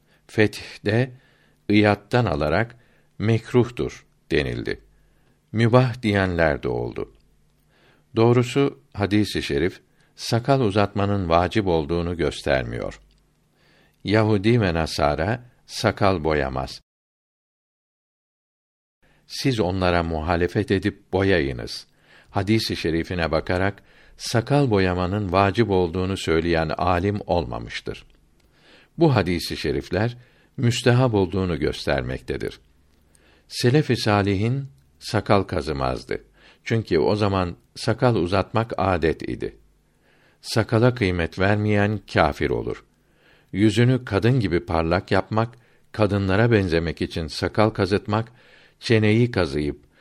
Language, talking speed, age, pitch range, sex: Turkish, 85 wpm, 60-79, 85-115 Hz, male